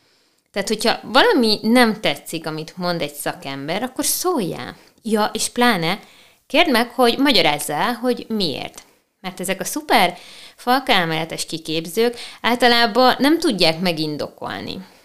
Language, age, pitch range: Hungarian, 20-39, 165-240 Hz